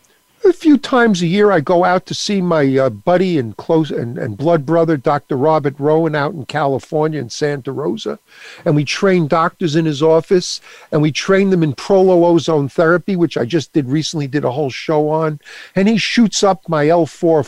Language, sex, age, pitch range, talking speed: English, male, 50-69, 145-185 Hz, 205 wpm